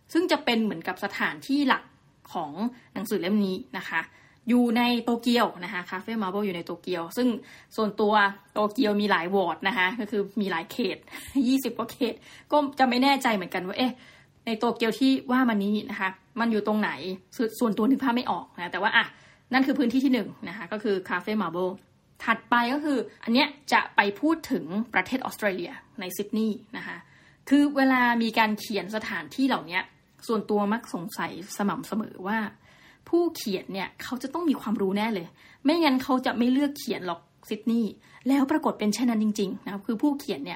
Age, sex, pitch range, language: 20-39, female, 200-260 Hz, Thai